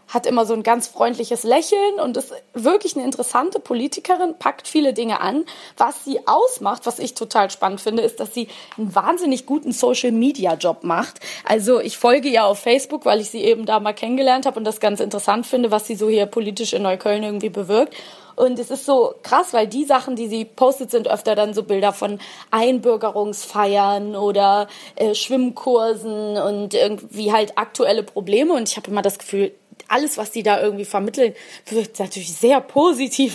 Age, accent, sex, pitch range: 20-39, German, female, 210-255 Hz